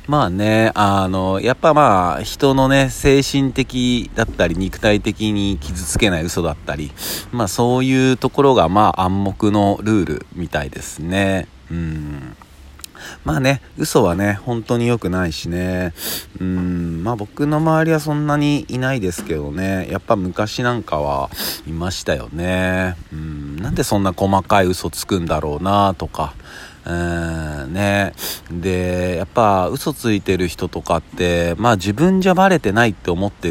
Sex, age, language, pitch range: male, 40-59, Japanese, 85-120 Hz